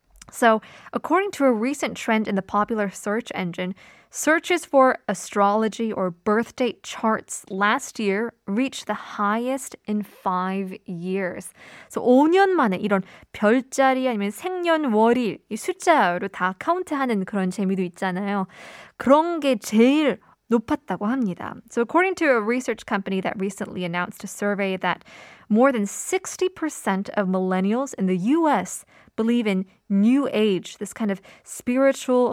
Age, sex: 20-39, female